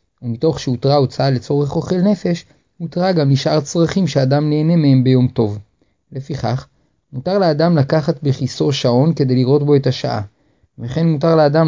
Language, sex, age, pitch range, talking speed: Hebrew, male, 30-49, 130-165 Hz, 150 wpm